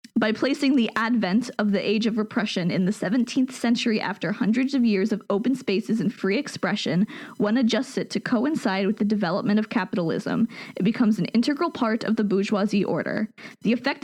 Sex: female